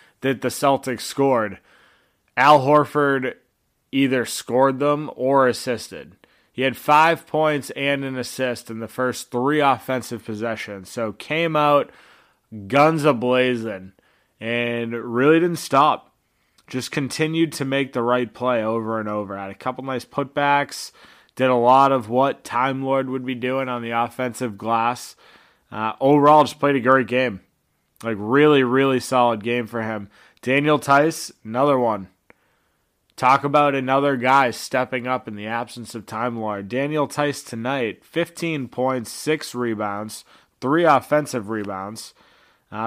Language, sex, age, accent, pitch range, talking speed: English, male, 20-39, American, 115-140 Hz, 145 wpm